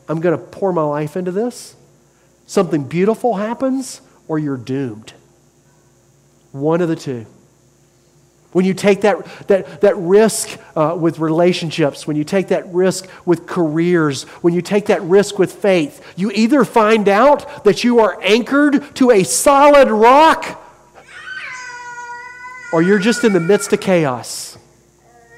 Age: 40-59